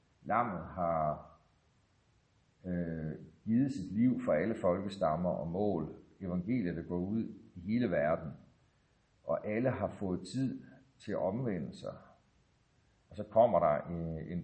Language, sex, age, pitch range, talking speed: Danish, male, 60-79, 80-110 Hz, 130 wpm